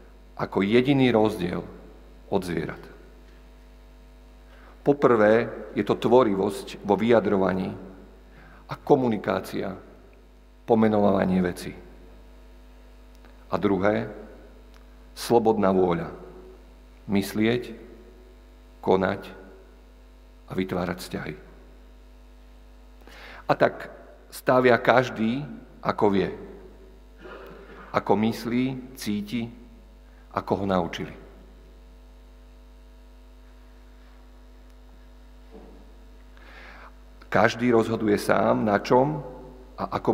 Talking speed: 65 wpm